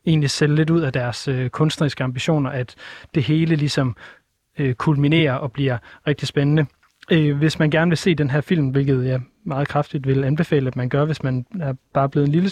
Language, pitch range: Danish, 135-155 Hz